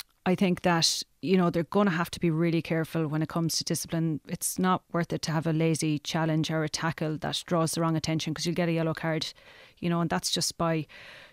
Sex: female